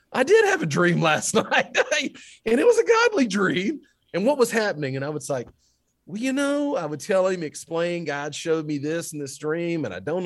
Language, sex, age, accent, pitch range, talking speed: English, male, 40-59, American, 125-185 Hz, 230 wpm